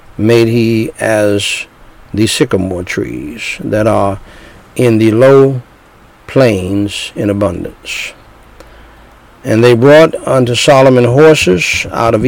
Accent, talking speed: American, 110 wpm